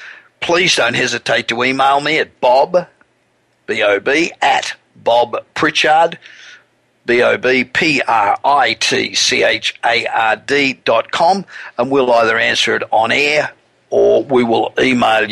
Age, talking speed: 50-69, 100 wpm